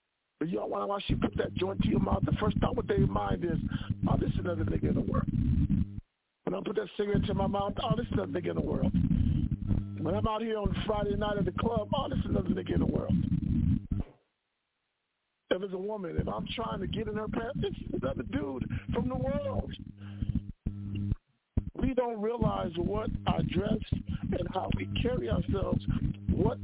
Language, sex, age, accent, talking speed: English, male, 50-69, American, 205 wpm